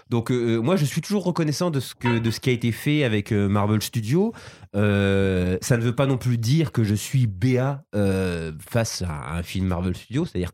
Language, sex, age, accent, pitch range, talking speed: French, male, 20-39, French, 105-150 Hz, 235 wpm